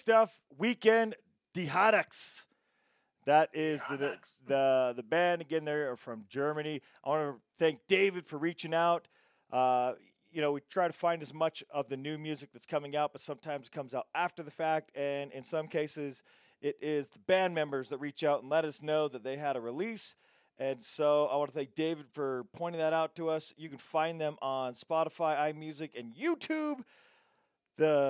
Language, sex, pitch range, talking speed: English, male, 135-160 Hz, 195 wpm